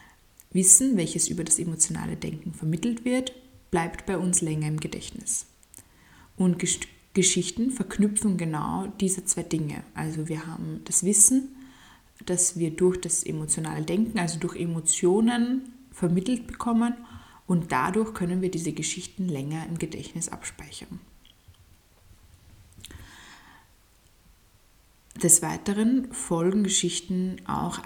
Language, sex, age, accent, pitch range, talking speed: German, female, 20-39, German, 160-220 Hz, 110 wpm